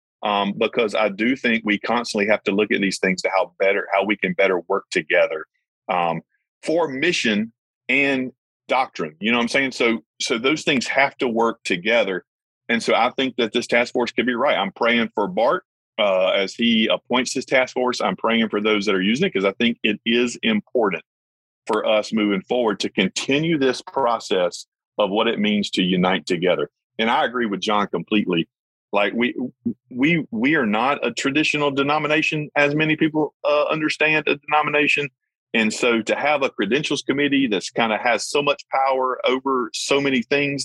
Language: English